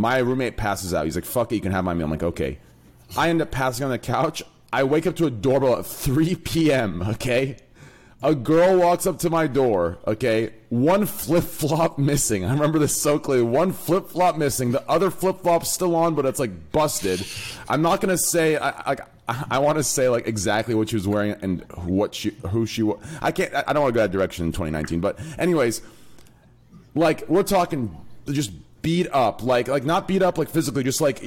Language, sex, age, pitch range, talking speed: English, male, 30-49, 115-165 Hz, 220 wpm